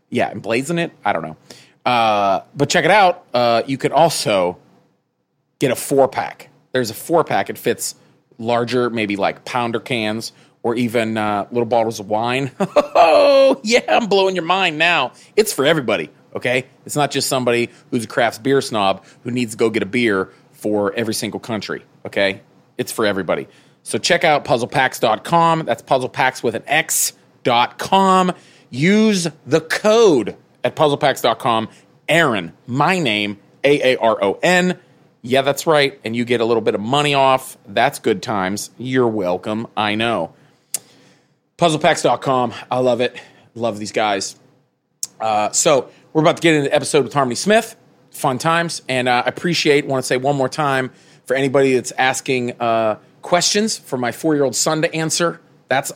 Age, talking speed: 30-49, 170 wpm